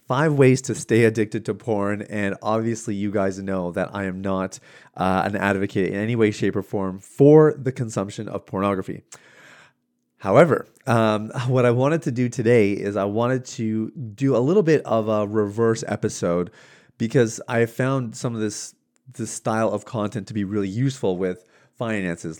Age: 30-49